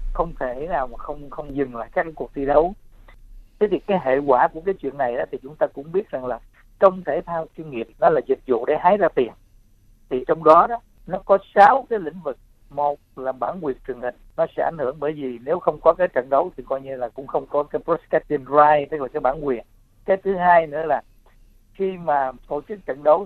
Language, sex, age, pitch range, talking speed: Vietnamese, male, 60-79, 130-175 Hz, 250 wpm